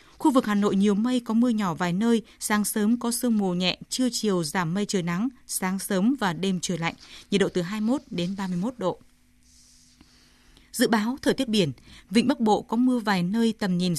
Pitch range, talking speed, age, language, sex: 190-235 Hz, 215 wpm, 20-39, Vietnamese, female